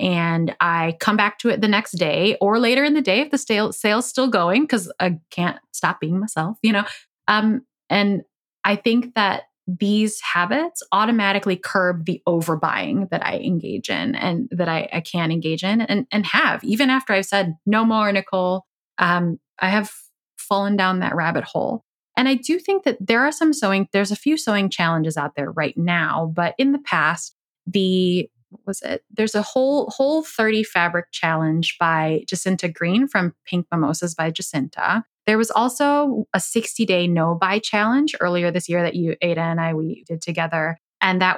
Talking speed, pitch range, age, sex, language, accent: 185 wpm, 170-220 Hz, 20-39, female, English, American